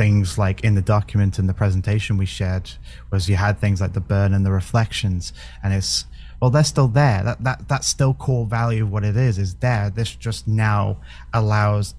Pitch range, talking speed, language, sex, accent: 70-115 Hz, 215 wpm, English, male, British